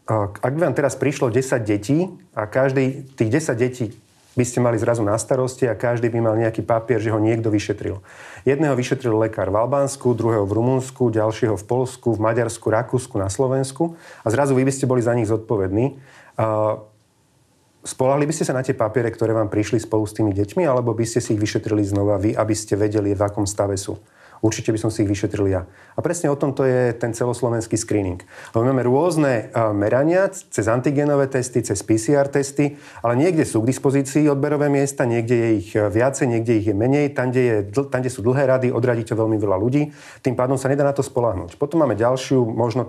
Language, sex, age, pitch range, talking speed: Slovak, male, 30-49, 110-135 Hz, 200 wpm